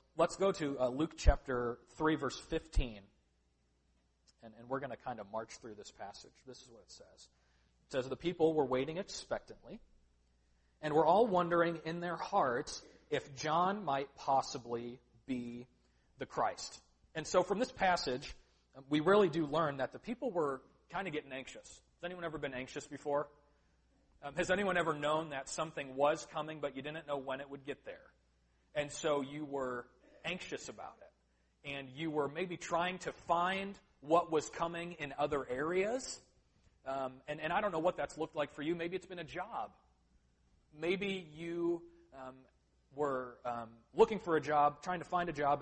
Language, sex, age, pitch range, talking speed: English, male, 40-59, 115-160 Hz, 180 wpm